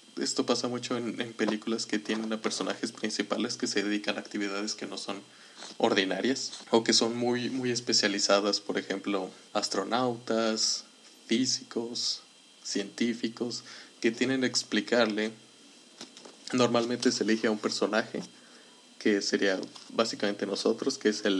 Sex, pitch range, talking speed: male, 105-125 Hz, 135 wpm